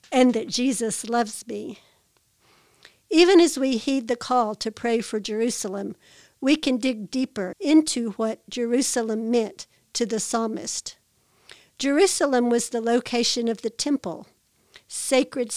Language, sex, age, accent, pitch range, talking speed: English, female, 60-79, American, 230-265 Hz, 130 wpm